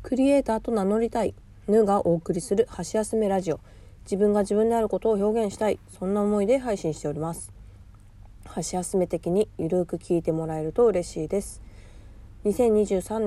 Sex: female